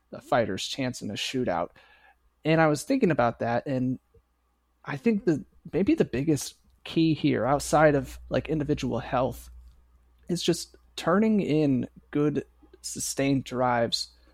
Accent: American